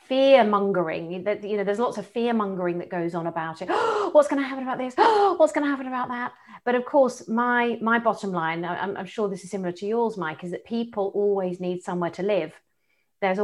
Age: 40-59